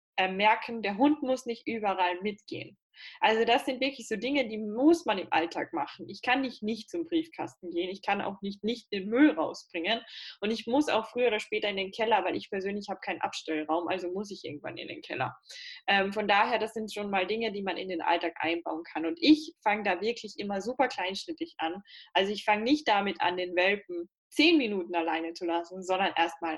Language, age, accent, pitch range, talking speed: German, 10-29, German, 190-250 Hz, 220 wpm